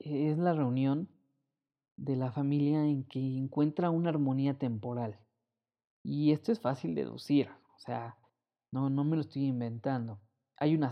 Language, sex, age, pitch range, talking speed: Spanish, male, 20-39, 120-140 Hz, 150 wpm